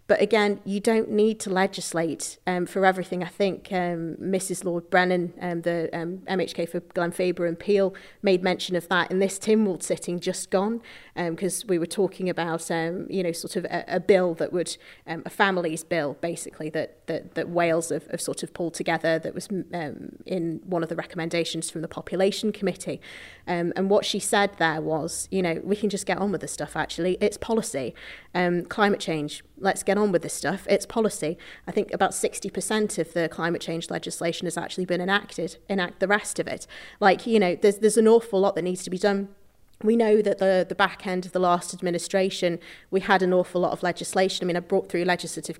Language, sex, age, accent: English, female, 30-49, British